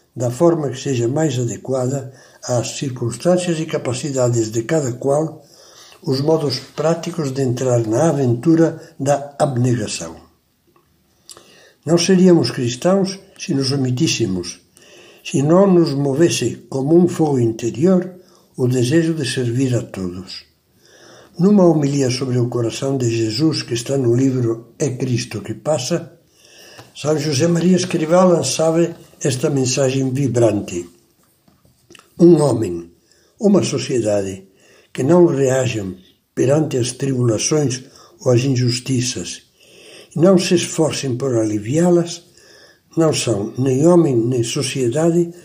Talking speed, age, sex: 120 wpm, 60-79, male